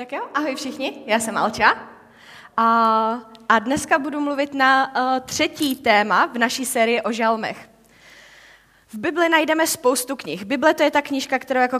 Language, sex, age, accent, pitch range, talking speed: Czech, female, 20-39, native, 235-290 Hz, 160 wpm